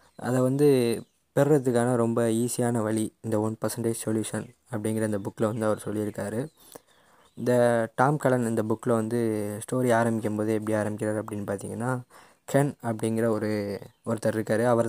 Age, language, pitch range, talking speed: 20-39, Tamil, 110-125 Hz, 135 wpm